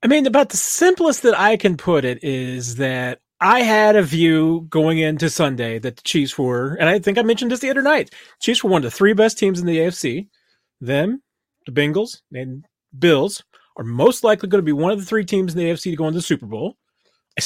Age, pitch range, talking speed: 30-49, 150-230 Hz, 240 wpm